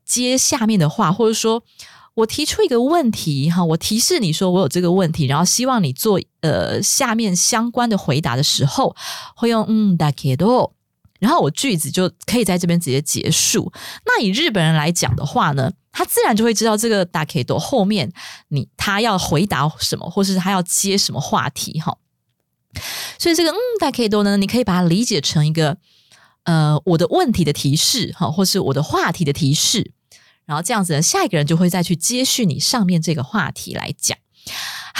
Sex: female